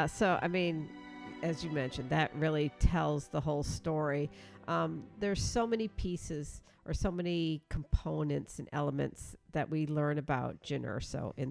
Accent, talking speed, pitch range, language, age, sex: American, 150 wpm, 145-175 Hz, English, 50-69, female